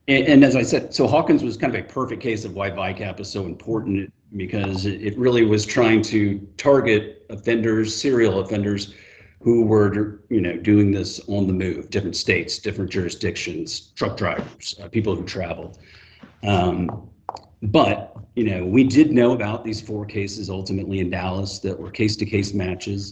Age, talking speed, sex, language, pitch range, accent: 40-59, 170 wpm, male, English, 95-110 Hz, American